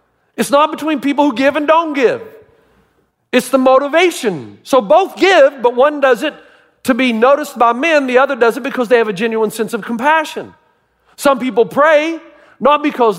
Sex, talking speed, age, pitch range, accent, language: male, 185 wpm, 40-59, 225-305 Hz, American, English